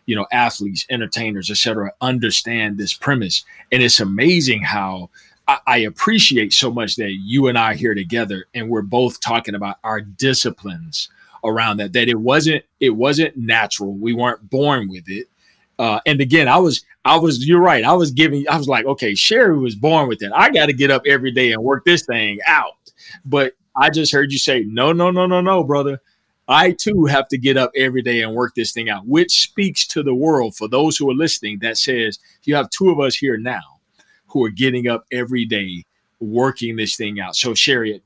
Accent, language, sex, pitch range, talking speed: American, English, male, 110-140 Hz, 210 wpm